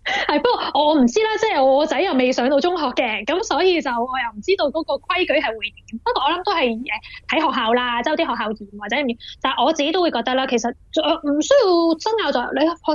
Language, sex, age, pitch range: Chinese, female, 20-39, 240-325 Hz